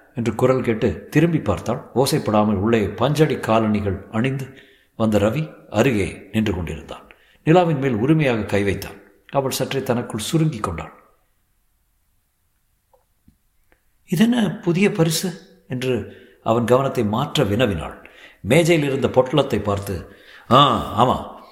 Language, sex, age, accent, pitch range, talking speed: Tamil, male, 50-69, native, 105-140 Hz, 110 wpm